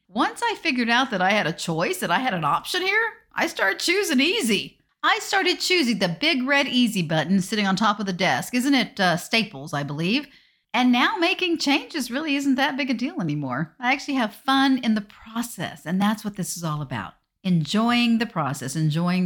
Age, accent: 50-69, American